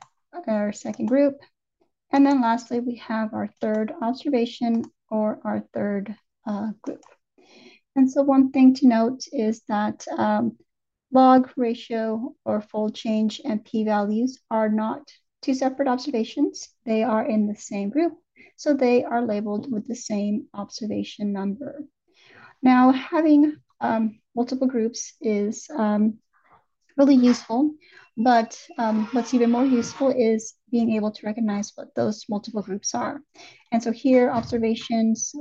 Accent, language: American, English